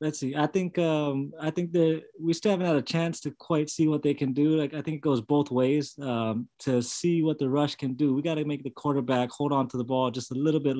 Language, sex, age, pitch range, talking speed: English, male, 20-39, 110-135 Hz, 285 wpm